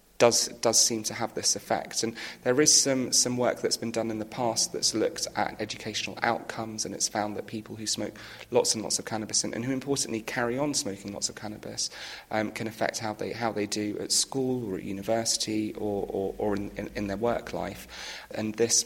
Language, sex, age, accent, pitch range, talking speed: English, male, 30-49, British, 105-115 Hz, 225 wpm